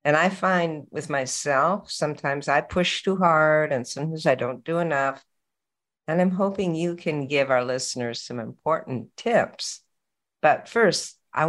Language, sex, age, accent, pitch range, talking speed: English, female, 60-79, American, 135-170 Hz, 155 wpm